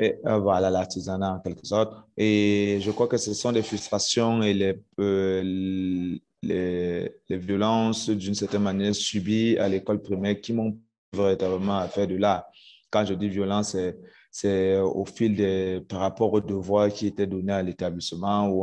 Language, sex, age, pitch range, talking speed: French, male, 30-49, 95-105 Hz, 170 wpm